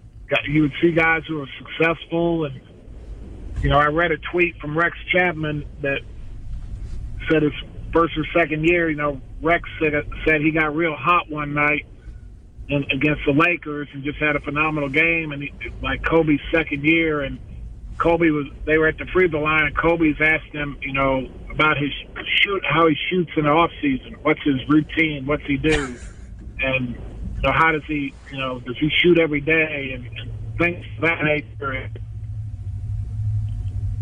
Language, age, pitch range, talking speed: English, 50-69, 130-165 Hz, 180 wpm